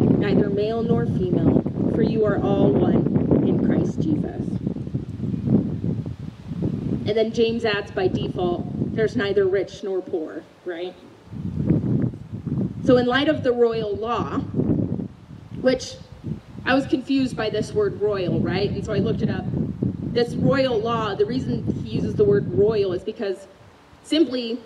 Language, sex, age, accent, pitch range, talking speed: English, female, 30-49, American, 200-275 Hz, 145 wpm